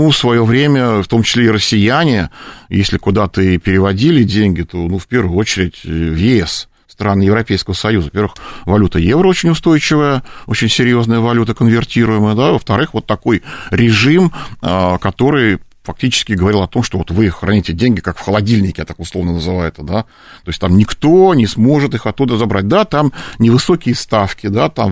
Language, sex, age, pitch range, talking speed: Russian, male, 40-59, 95-125 Hz, 170 wpm